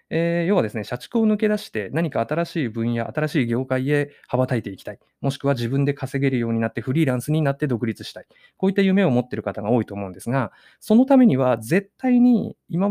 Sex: male